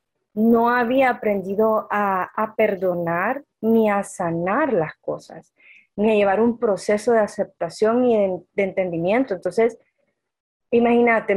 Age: 20-39